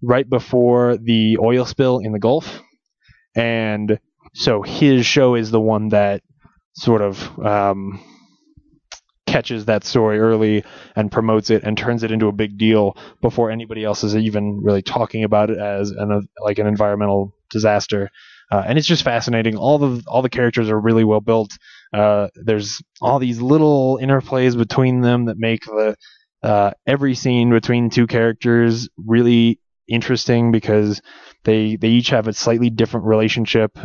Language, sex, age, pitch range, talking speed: English, male, 20-39, 105-120 Hz, 160 wpm